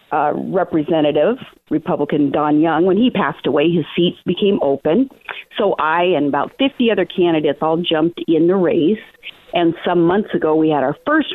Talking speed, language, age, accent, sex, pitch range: 175 wpm, English, 40-59, American, female, 165-245 Hz